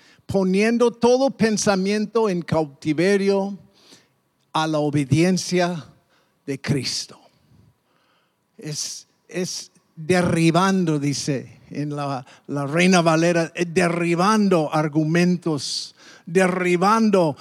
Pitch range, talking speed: 170-230 Hz, 75 wpm